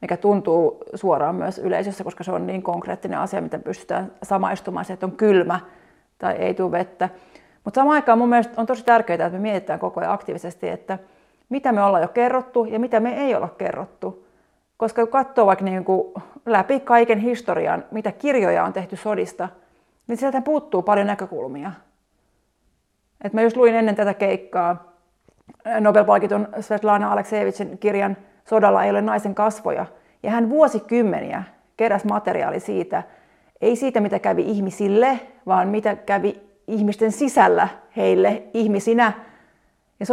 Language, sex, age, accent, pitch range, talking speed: Finnish, female, 30-49, native, 200-235 Hz, 150 wpm